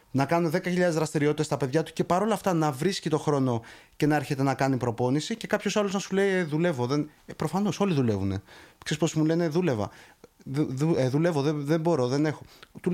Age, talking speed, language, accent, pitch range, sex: 30-49, 185 wpm, Greek, native, 145-190 Hz, male